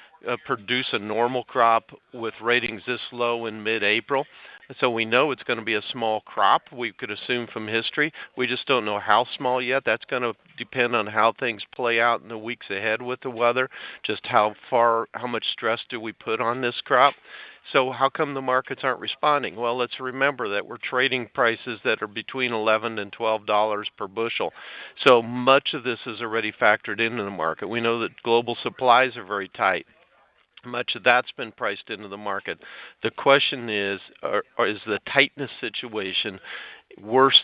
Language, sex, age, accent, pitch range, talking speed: English, male, 50-69, American, 110-125 Hz, 185 wpm